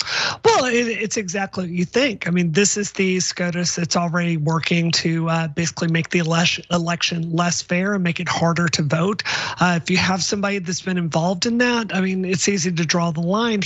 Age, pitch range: 30-49, 165-195 Hz